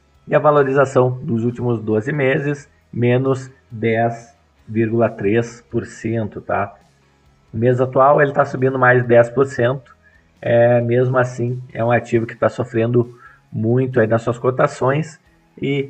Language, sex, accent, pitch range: Portuguese, male, Brazilian, 95-125 Hz